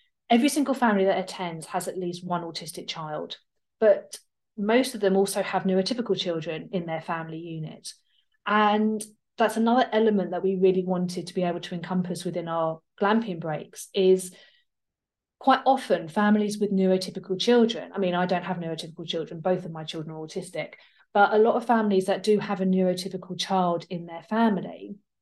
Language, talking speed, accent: English, 175 wpm, British